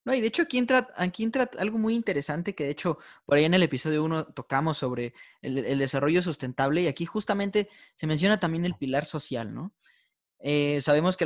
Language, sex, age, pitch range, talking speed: Spanish, male, 20-39, 130-180 Hz, 210 wpm